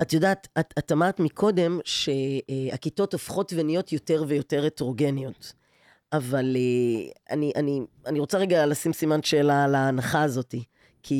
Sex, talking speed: female, 130 wpm